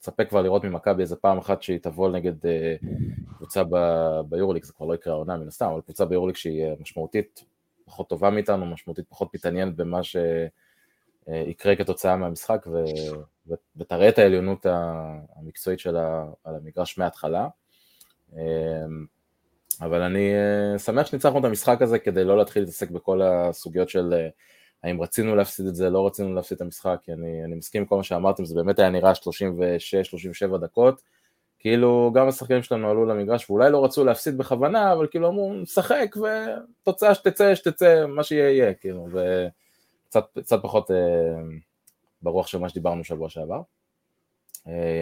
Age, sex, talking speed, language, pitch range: 20-39, male, 150 wpm, Hebrew, 85-105 Hz